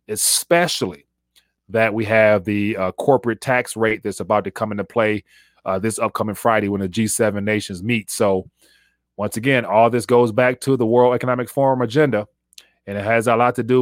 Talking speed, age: 190 wpm, 30-49